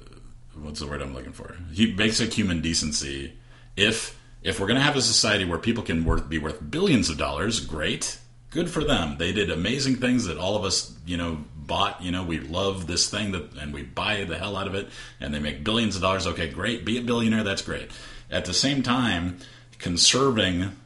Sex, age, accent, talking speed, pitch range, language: male, 40-59, American, 215 wpm, 80-115 Hz, English